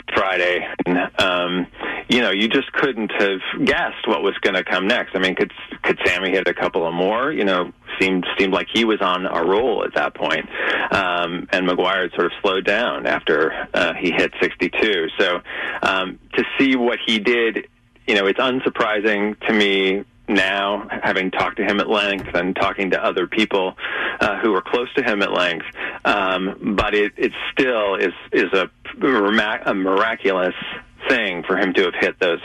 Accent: American